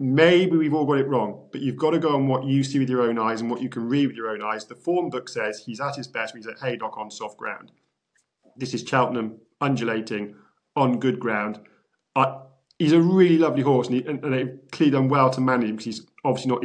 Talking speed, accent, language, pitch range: 255 wpm, British, English, 115-140 Hz